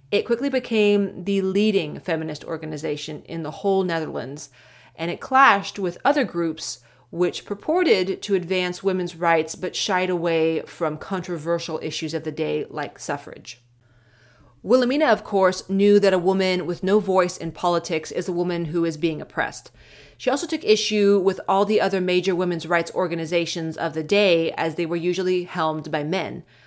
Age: 30-49